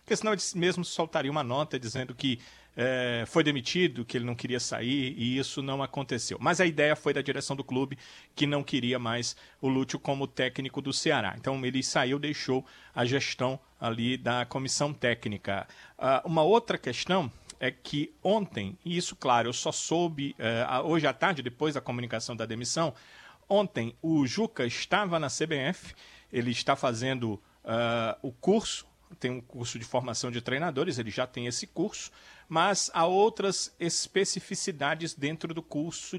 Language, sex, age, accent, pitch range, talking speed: Portuguese, male, 40-59, Brazilian, 125-165 Hz, 165 wpm